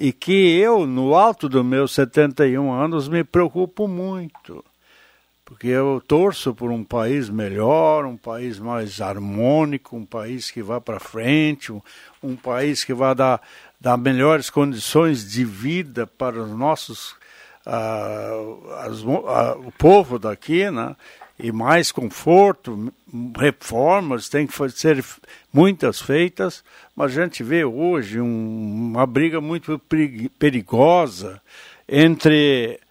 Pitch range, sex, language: 125-170 Hz, male, Portuguese